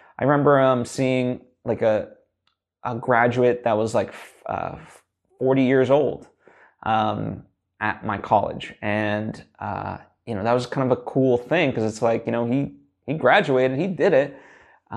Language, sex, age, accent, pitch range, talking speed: English, male, 20-39, American, 115-140 Hz, 170 wpm